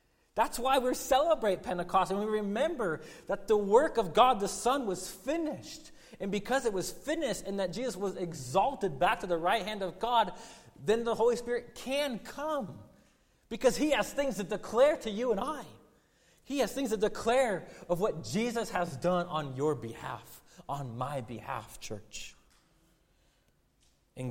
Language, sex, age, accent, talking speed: English, male, 30-49, American, 170 wpm